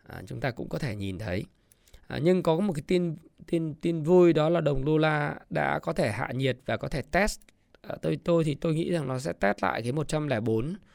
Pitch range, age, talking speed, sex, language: 130-175 Hz, 20-39, 240 wpm, male, Vietnamese